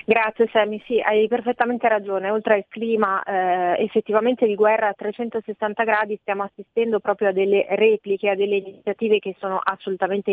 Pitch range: 200-230 Hz